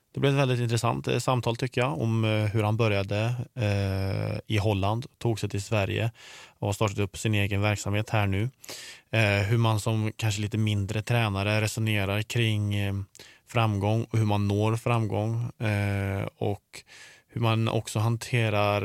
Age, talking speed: 20-39, 160 wpm